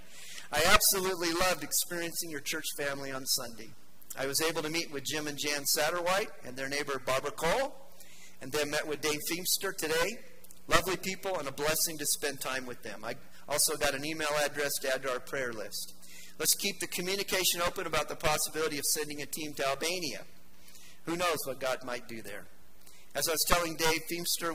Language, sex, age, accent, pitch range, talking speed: English, male, 40-59, American, 130-170 Hz, 195 wpm